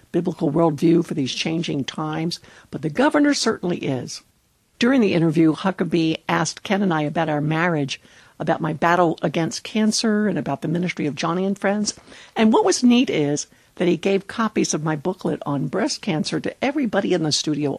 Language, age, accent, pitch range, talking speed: English, 60-79, American, 160-215 Hz, 185 wpm